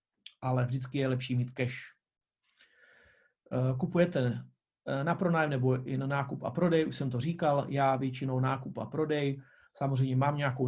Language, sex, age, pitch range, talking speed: Czech, male, 40-59, 130-155 Hz, 150 wpm